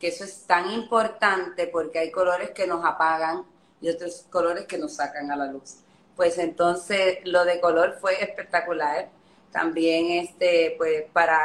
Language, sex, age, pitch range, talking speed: Spanish, female, 30-49, 170-205 Hz, 150 wpm